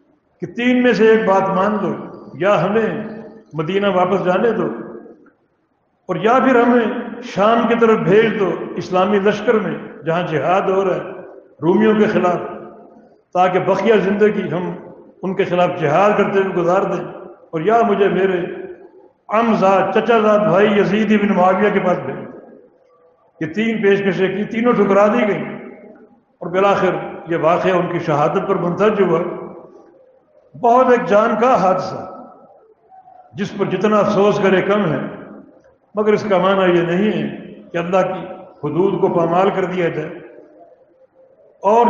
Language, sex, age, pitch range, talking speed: English, male, 60-79, 185-220 Hz, 125 wpm